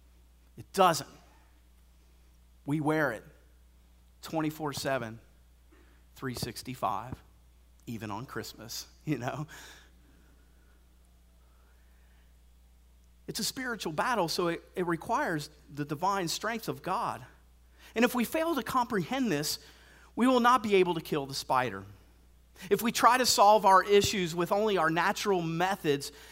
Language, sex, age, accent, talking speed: English, male, 40-59, American, 120 wpm